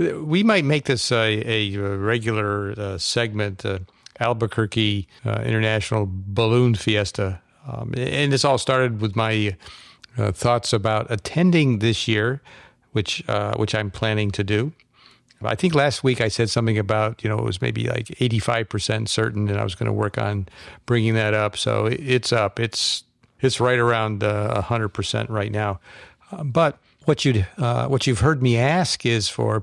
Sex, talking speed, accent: male, 170 wpm, American